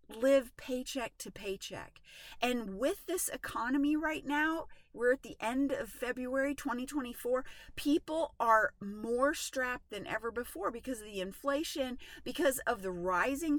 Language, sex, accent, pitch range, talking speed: English, female, American, 235-305 Hz, 140 wpm